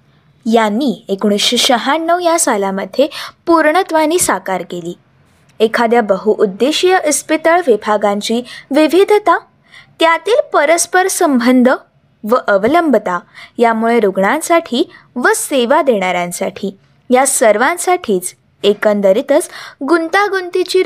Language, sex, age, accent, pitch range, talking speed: Marathi, female, 20-39, native, 235-360 Hz, 80 wpm